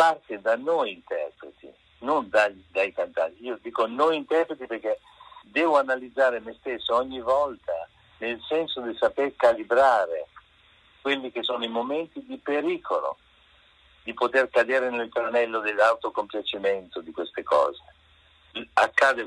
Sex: male